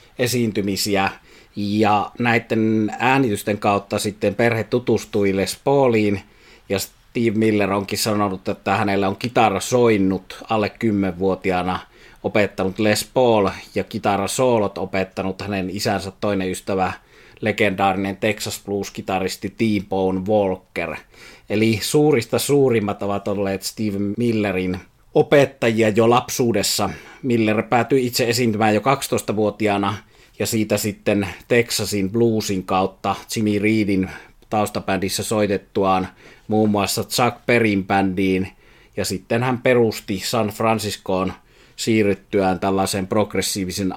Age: 30-49